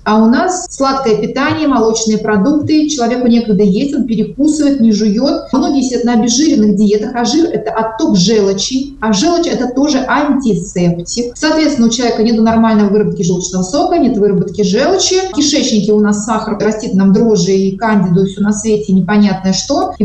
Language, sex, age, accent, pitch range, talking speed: Russian, female, 30-49, native, 205-255 Hz, 170 wpm